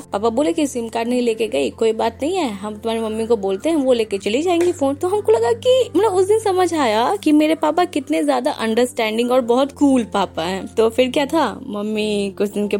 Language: Hindi